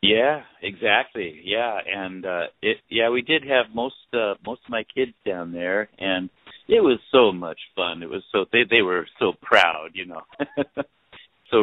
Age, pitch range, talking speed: 50-69, 85-115 Hz, 180 wpm